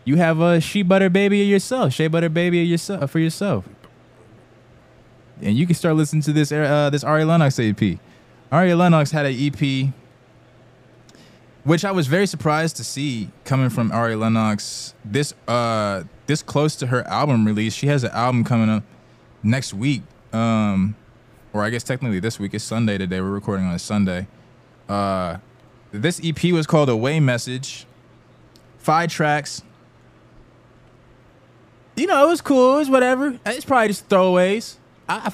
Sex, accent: male, American